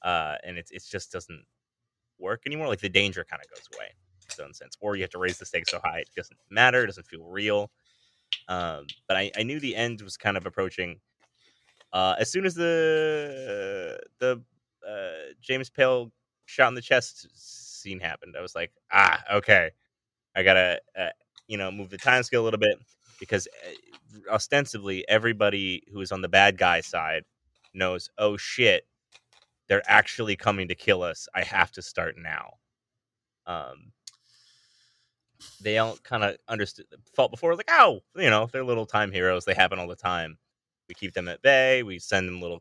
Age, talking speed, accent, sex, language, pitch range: 20-39, 185 wpm, American, male, English, 95-125 Hz